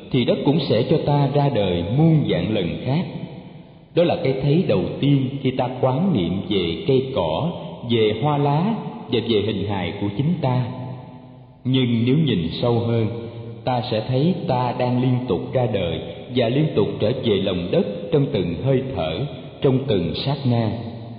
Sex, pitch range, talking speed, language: male, 115-145 Hz, 180 wpm, Vietnamese